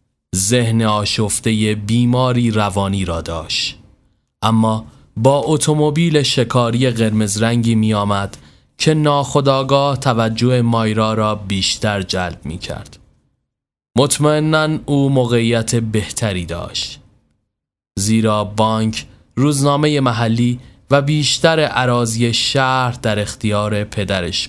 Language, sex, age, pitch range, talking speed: Persian, male, 20-39, 105-135 Hz, 90 wpm